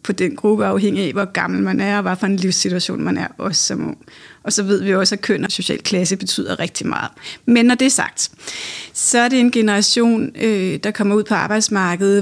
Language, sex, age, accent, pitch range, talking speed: Danish, female, 30-49, native, 195-230 Hz, 235 wpm